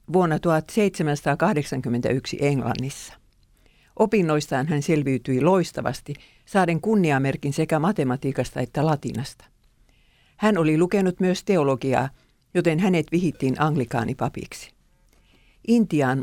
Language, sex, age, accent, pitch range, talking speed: Finnish, female, 60-79, native, 135-175 Hz, 85 wpm